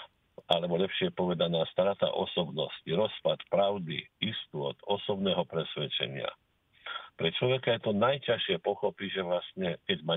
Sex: male